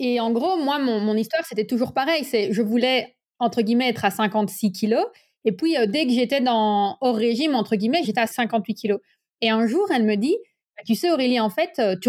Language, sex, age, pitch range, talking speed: French, female, 30-49, 205-260 Hz, 225 wpm